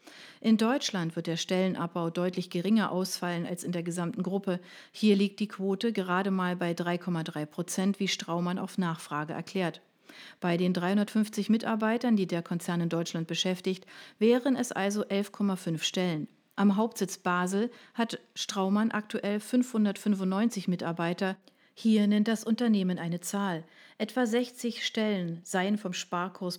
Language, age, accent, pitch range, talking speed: German, 40-59, German, 180-220 Hz, 140 wpm